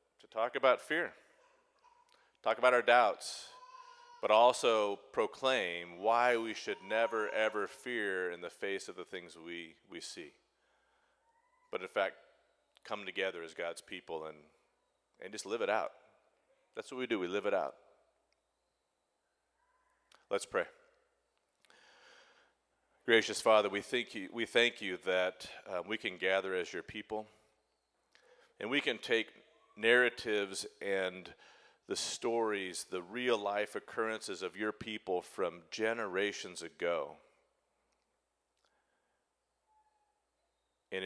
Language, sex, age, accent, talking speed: English, male, 40-59, American, 125 wpm